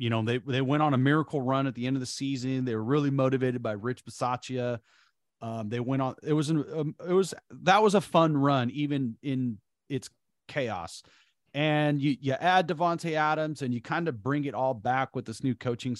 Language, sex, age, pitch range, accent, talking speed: English, male, 30-49, 115-145 Hz, American, 220 wpm